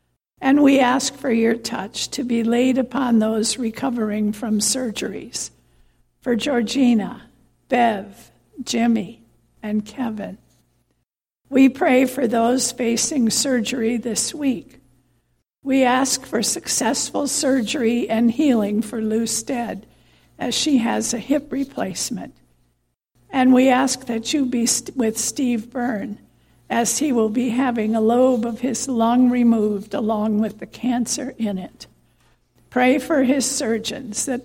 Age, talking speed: 60-79, 130 wpm